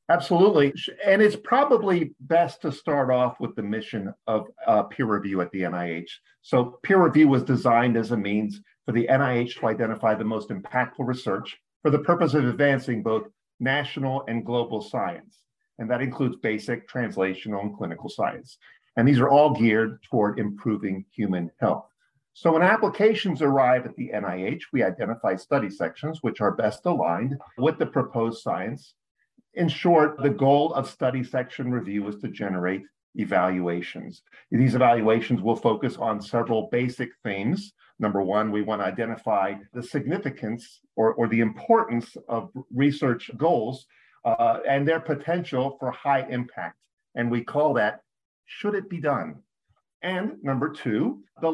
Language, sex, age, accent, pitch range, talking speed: English, male, 50-69, American, 115-155 Hz, 155 wpm